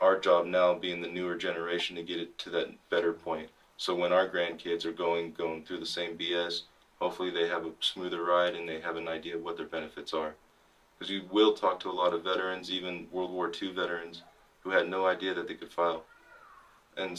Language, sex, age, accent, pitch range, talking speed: English, male, 20-39, American, 85-100 Hz, 225 wpm